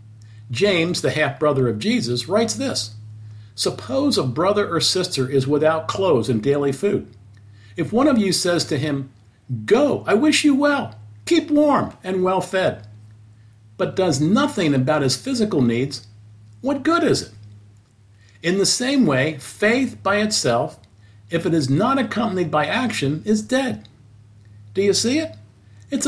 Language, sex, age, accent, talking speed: English, male, 50-69, American, 150 wpm